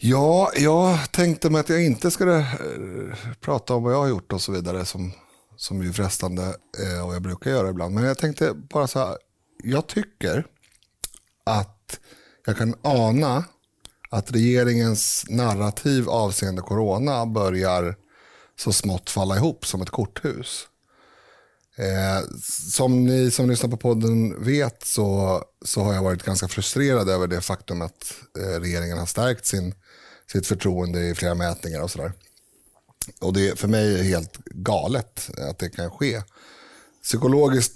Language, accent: Swedish, native